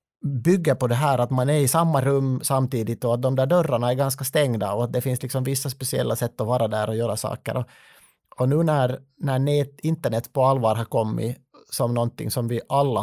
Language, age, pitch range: Swedish, 30-49, 120-145 Hz